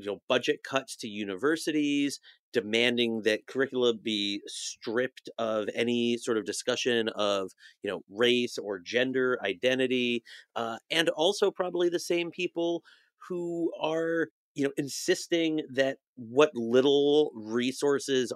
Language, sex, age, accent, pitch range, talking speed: English, male, 30-49, American, 110-140 Hz, 125 wpm